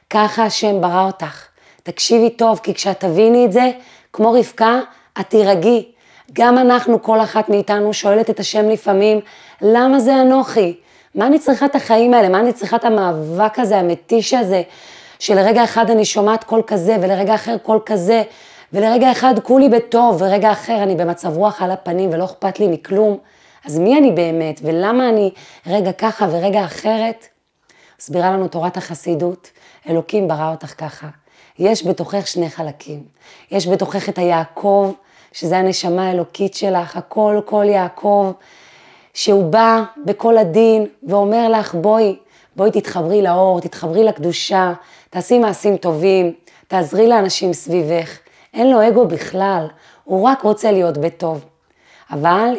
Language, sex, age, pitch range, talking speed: Hebrew, female, 30-49, 175-225 Hz, 145 wpm